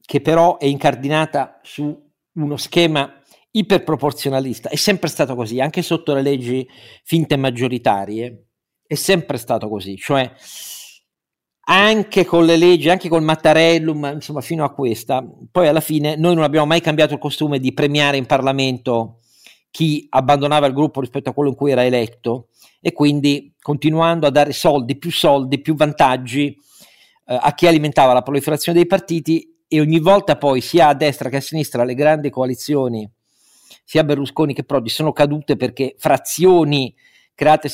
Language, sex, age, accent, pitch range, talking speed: Italian, male, 50-69, native, 135-160 Hz, 155 wpm